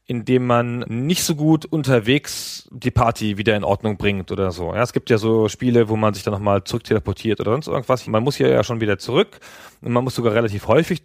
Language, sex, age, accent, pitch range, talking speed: German, male, 30-49, German, 105-130 Hz, 230 wpm